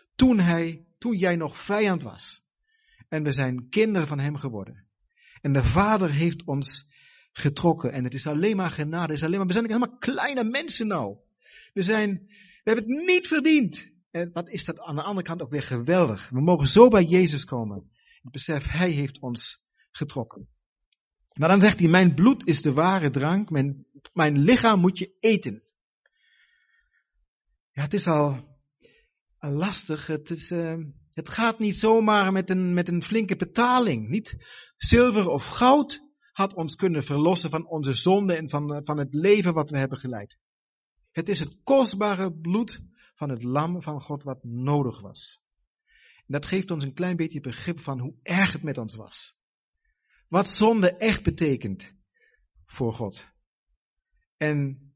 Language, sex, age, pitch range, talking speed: Dutch, male, 50-69, 145-205 Hz, 165 wpm